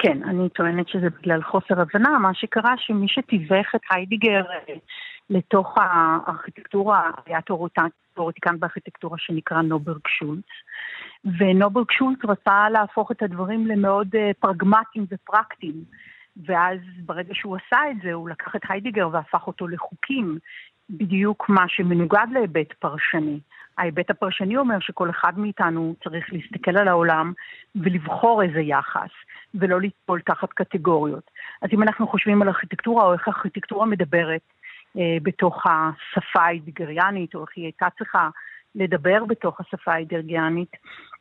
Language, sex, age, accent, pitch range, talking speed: Hebrew, female, 50-69, native, 170-205 Hz, 130 wpm